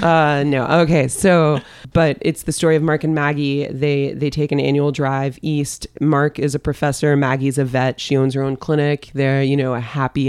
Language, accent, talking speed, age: English, American, 210 wpm, 20-39